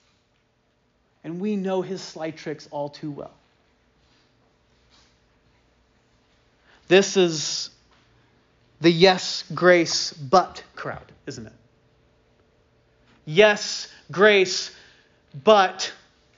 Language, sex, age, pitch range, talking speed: English, male, 30-49, 175-245 Hz, 75 wpm